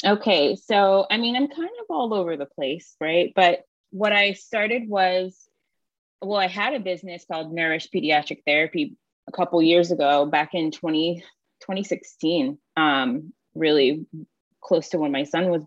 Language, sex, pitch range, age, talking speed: English, female, 155-200 Hz, 20-39, 155 wpm